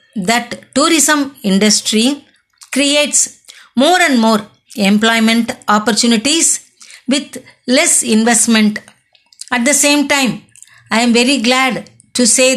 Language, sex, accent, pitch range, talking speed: English, female, Indian, 230-280 Hz, 105 wpm